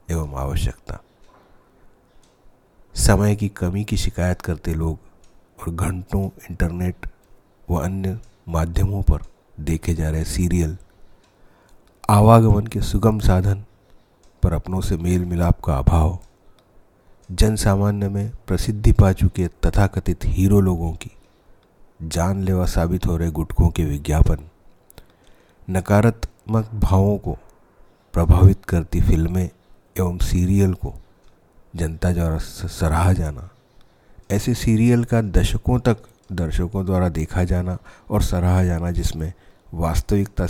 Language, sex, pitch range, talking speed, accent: Hindi, male, 85-100 Hz, 110 wpm, native